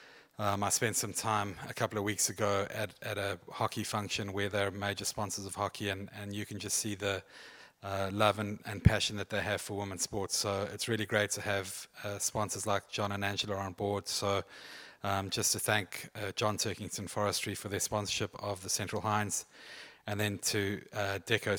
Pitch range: 100-105 Hz